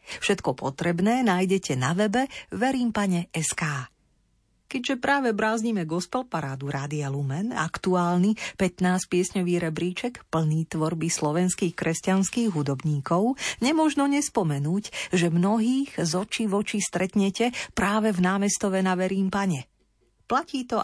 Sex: female